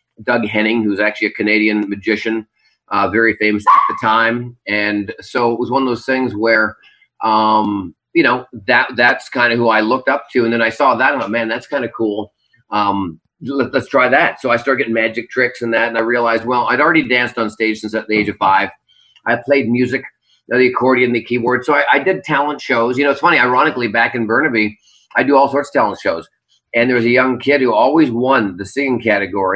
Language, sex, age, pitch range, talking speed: English, male, 40-59, 110-125 Hz, 240 wpm